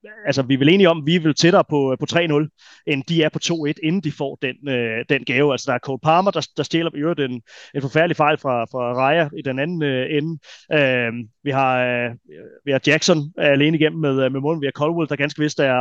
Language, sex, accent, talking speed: Danish, male, native, 245 wpm